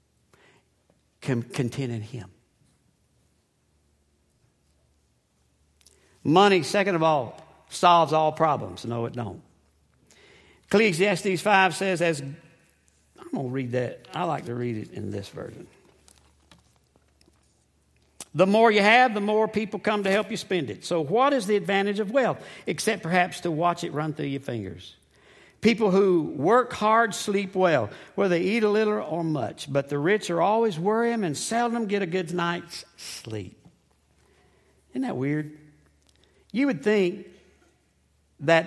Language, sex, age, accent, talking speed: English, male, 60-79, American, 145 wpm